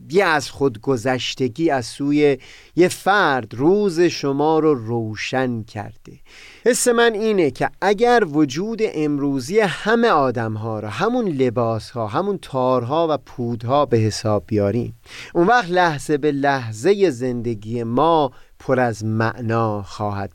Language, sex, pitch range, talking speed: Persian, male, 120-175 Hz, 125 wpm